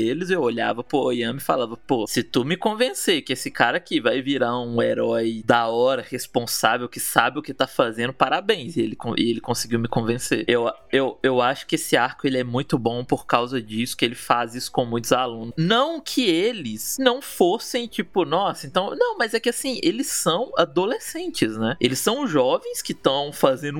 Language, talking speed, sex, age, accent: Portuguese, 200 wpm, male, 20-39, Brazilian